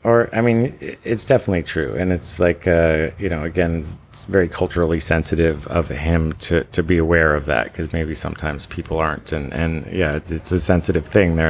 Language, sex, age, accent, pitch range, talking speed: English, male, 30-49, American, 80-90 Hz, 200 wpm